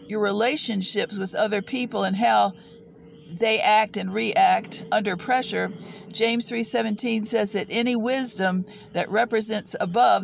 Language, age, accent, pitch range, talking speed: English, 50-69, American, 190-230 Hz, 130 wpm